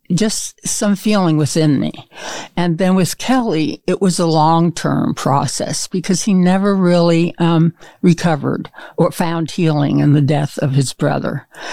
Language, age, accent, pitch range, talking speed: English, 60-79, American, 150-185 Hz, 150 wpm